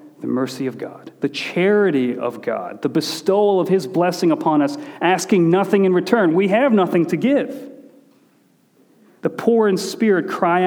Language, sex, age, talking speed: English, male, 40-59, 165 wpm